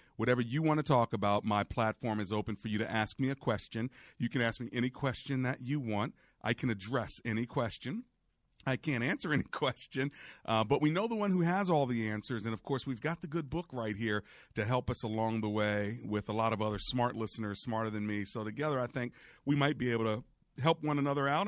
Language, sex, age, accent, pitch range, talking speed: English, male, 40-59, American, 100-125 Hz, 240 wpm